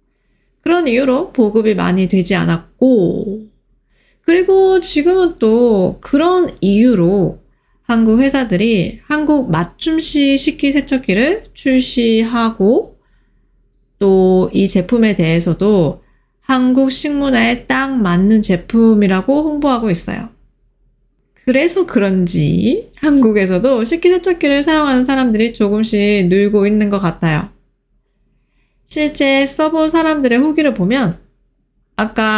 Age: 20-39